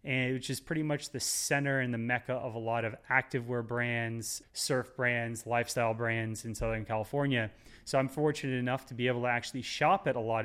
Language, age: English, 30-49